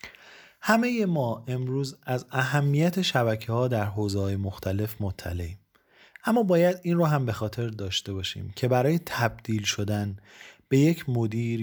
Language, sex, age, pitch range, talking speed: Persian, male, 30-49, 105-145 Hz, 135 wpm